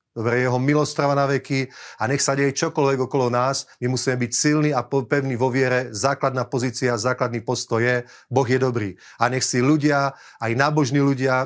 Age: 30-49